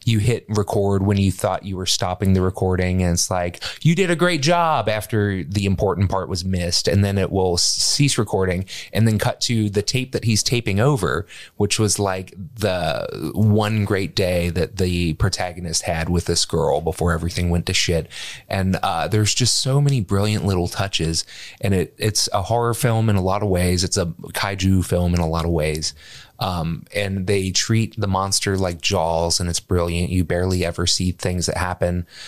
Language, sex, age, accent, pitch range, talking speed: English, male, 30-49, American, 90-105 Hz, 200 wpm